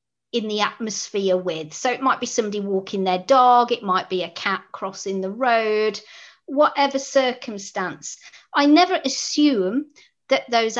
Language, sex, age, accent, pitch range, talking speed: English, female, 50-69, British, 190-250 Hz, 150 wpm